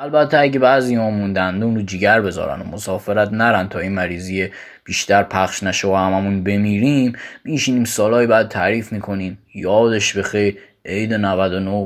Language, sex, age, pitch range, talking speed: Persian, male, 20-39, 105-140 Hz, 145 wpm